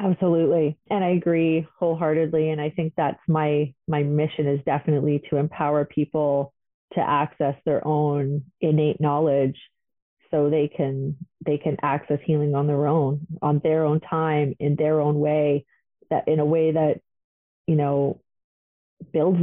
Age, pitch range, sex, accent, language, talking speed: 30-49, 150-185 Hz, female, American, English, 150 wpm